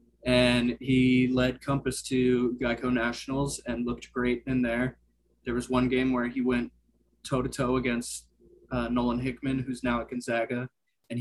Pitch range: 120-135 Hz